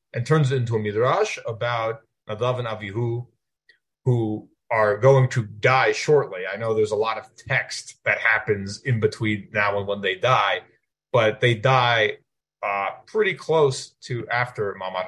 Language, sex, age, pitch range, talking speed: English, male, 30-49, 110-140 Hz, 165 wpm